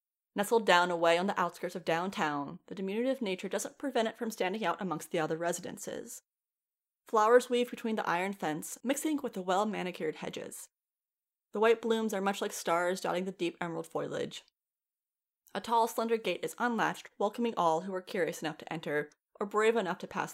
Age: 30-49